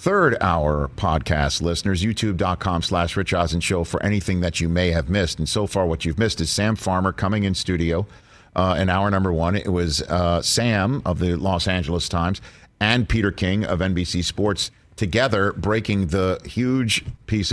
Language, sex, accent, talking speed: English, male, American, 180 wpm